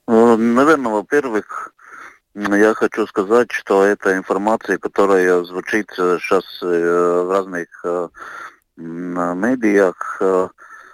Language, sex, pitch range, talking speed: Russian, male, 95-105 Hz, 75 wpm